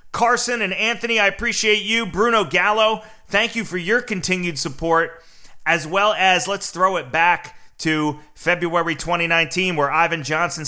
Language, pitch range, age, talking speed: English, 175-235 Hz, 30-49, 150 wpm